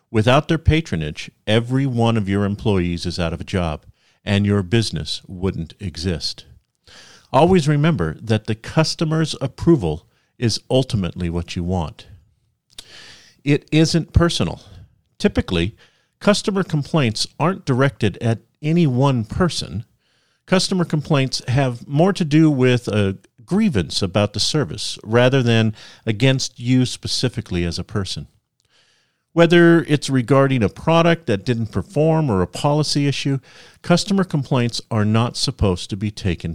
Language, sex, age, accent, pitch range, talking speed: English, male, 50-69, American, 100-140 Hz, 135 wpm